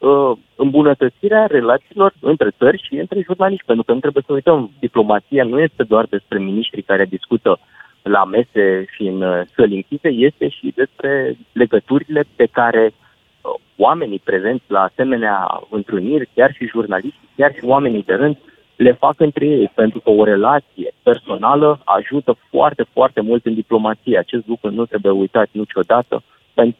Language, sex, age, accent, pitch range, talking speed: Romanian, male, 20-39, native, 105-140 Hz, 150 wpm